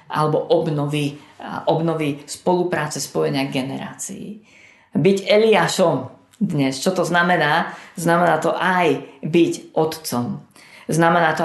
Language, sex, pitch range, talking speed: Slovak, female, 140-180 Hz, 95 wpm